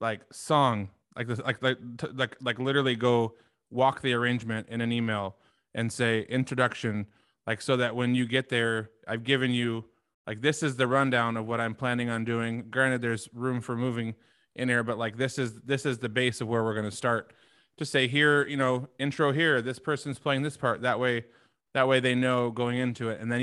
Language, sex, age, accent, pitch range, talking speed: English, male, 20-39, American, 115-135 Hz, 215 wpm